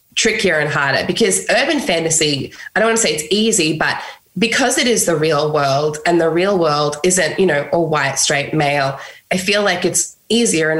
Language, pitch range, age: English, 150-195 Hz, 20-39